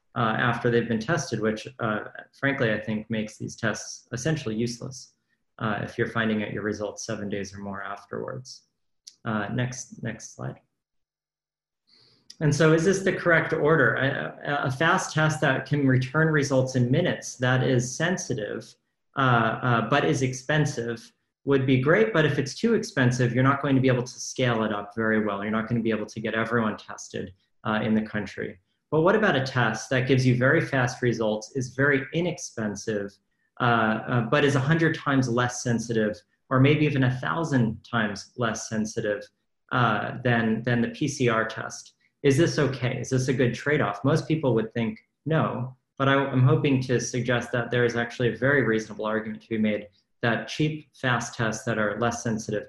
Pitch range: 110-135 Hz